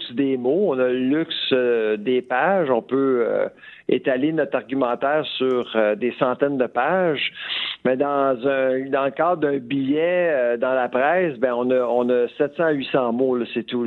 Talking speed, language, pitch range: 190 wpm, French, 130-160 Hz